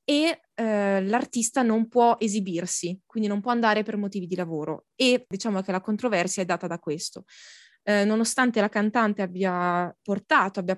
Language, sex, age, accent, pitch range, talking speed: Italian, female, 20-39, native, 185-225 Hz, 160 wpm